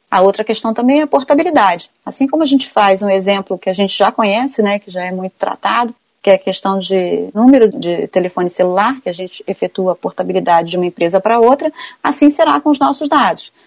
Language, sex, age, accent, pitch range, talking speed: Portuguese, female, 30-49, Brazilian, 195-270 Hz, 225 wpm